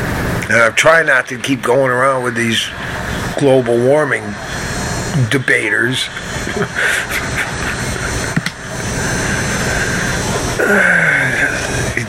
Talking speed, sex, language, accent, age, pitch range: 70 wpm, male, English, American, 50-69, 125-150 Hz